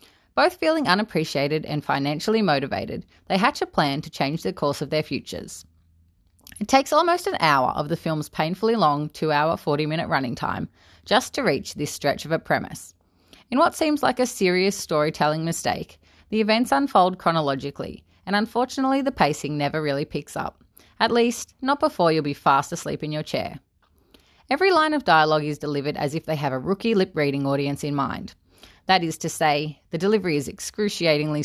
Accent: Australian